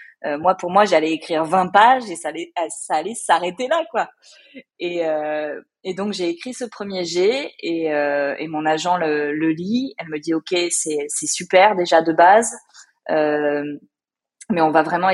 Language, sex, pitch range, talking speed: French, female, 155-210 Hz, 190 wpm